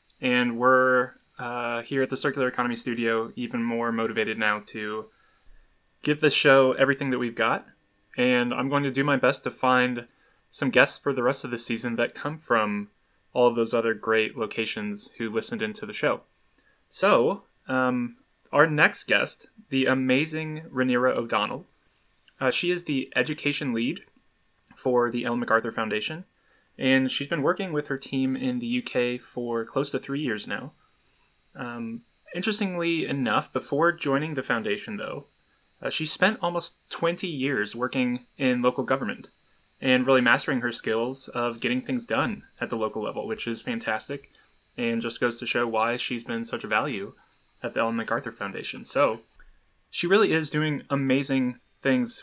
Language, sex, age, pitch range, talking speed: English, male, 20-39, 120-145 Hz, 165 wpm